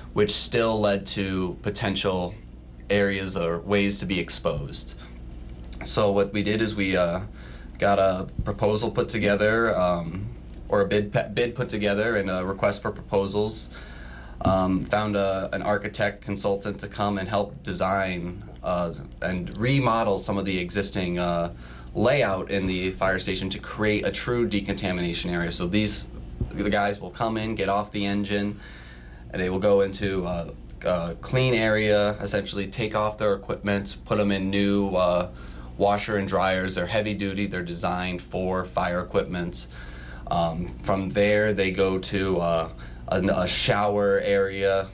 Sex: male